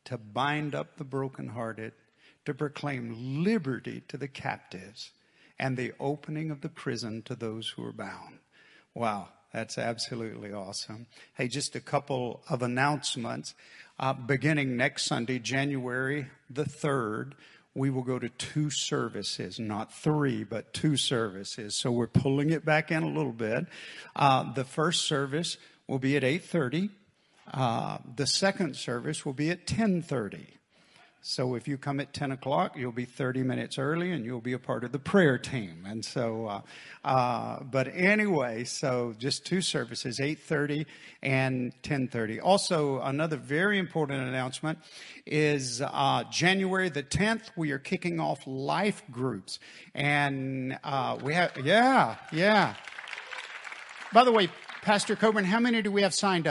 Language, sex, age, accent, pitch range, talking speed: English, male, 50-69, American, 125-160 Hz, 155 wpm